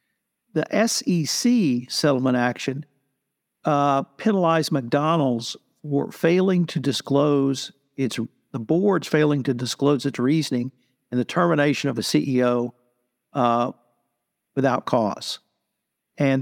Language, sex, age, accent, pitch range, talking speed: English, male, 60-79, American, 130-155 Hz, 105 wpm